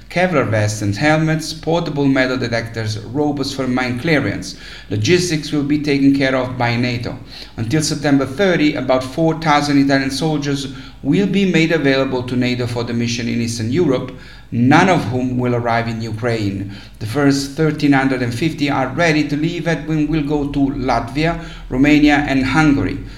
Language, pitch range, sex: English, 120-145 Hz, male